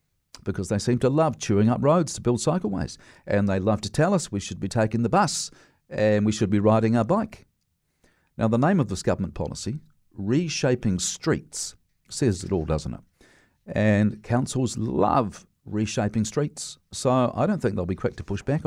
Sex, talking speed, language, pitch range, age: male, 190 wpm, English, 95-120 Hz, 50-69